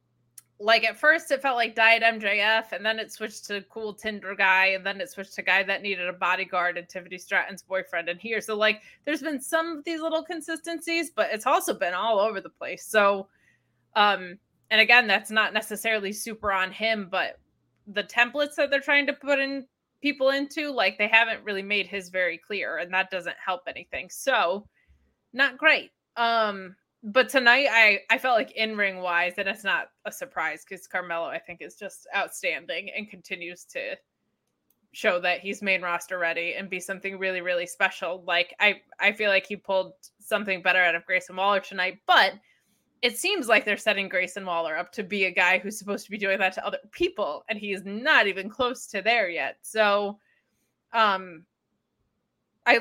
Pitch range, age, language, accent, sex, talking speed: 190-235 Hz, 20-39, English, American, female, 190 wpm